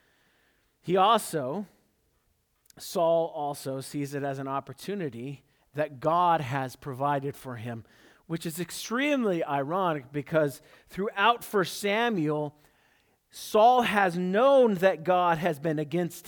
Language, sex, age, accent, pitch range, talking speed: English, male, 40-59, American, 135-200 Hz, 115 wpm